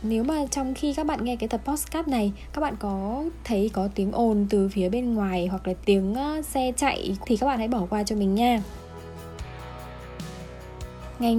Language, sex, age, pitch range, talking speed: Vietnamese, female, 10-29, 195-270 Hz, 195 wpm